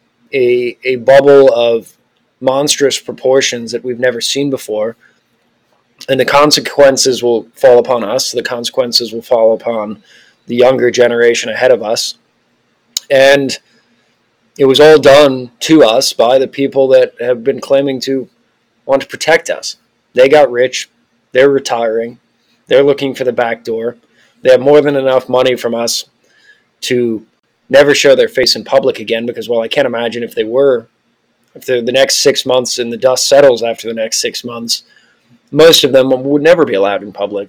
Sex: male